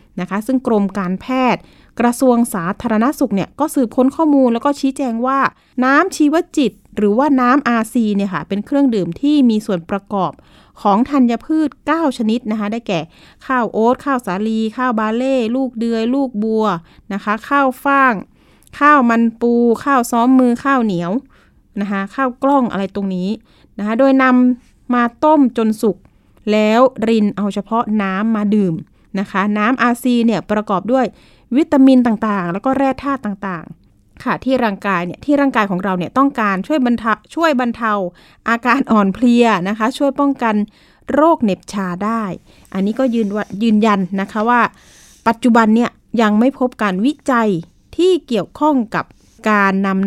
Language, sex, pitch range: Thai, female, 200-260 Hz